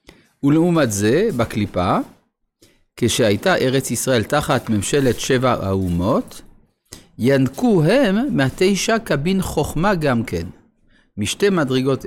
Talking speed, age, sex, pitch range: 95 wpm, 50-69, male, 110-170 Hz